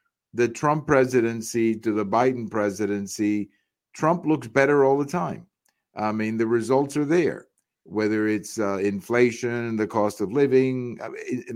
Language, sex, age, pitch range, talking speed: English, male, 50-69, 110-135 Hz, 145 wpm